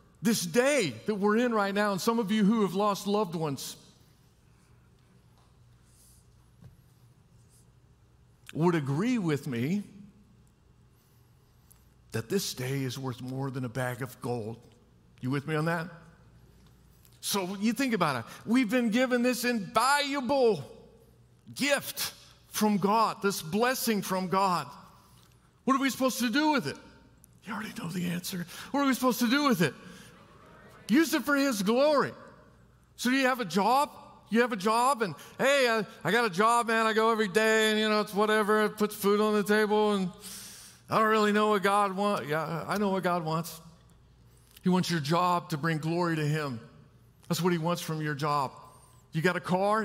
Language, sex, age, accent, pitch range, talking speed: English, male, 50-69, American, 165-230 Hz, 175 wpm